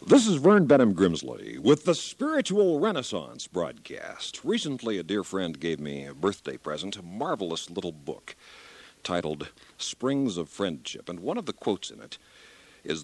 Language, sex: English, male